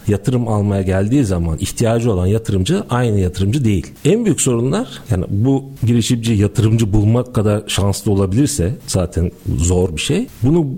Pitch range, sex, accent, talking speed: 100-135 Hz, male, native, 145 wpm